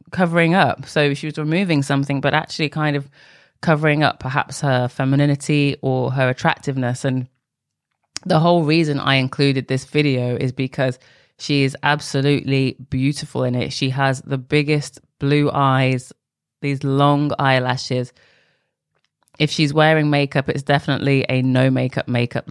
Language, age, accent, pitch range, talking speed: English, 20-39, British, 130-150 Hz, 145 wpm